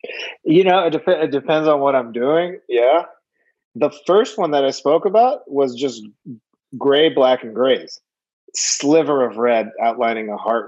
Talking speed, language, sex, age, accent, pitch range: 165 wpm, English, male, 30-49, American, 125-170 Hz